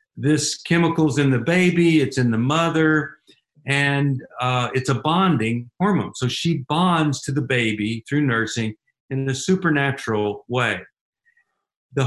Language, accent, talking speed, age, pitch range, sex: English, American, 140 wpm, 50-69, 130-165 Hz, male